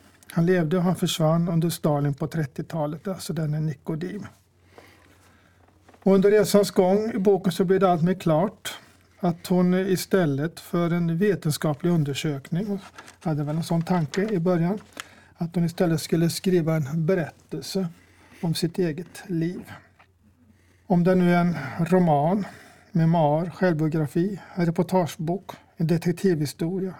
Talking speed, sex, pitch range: 135 wpm, male, 155-185 Hz